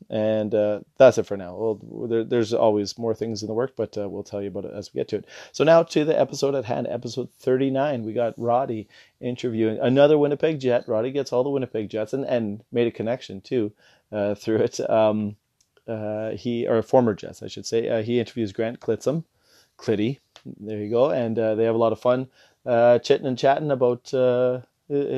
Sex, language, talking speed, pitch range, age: male, English, 215 wpm, 110-125 Hz, 30-49